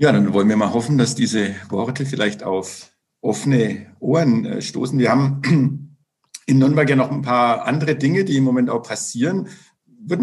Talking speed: 175 wpm